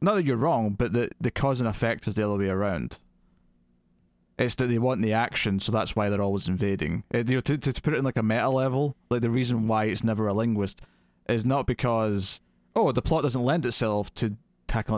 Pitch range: 100-125 Hz